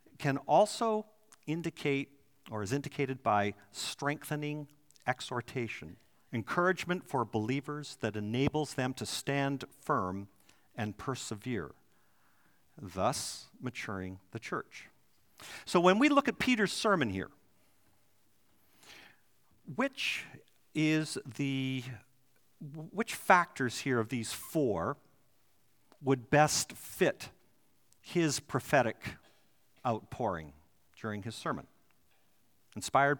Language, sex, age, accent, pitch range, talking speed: English, male, 50-69, American, 120-175 Hz, 90 wpm